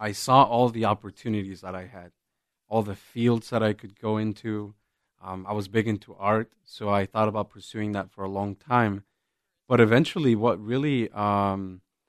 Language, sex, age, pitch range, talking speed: English, male, 30-49, 100-115 Hz, 185 wpm